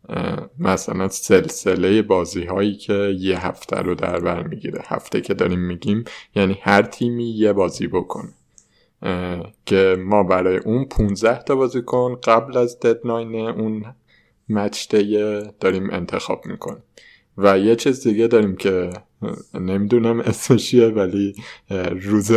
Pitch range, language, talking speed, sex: 95-115 Hz, Persian, 125 wpm, male